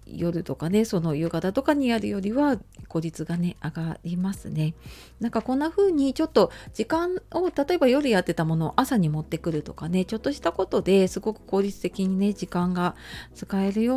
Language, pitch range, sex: Japanese, 165-225 Hz, female